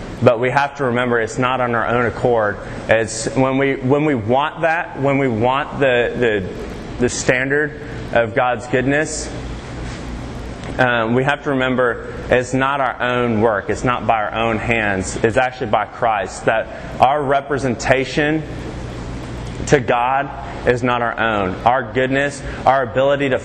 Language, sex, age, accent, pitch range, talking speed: English, male, 20-39, American, 120-145 Hz, 150 wpm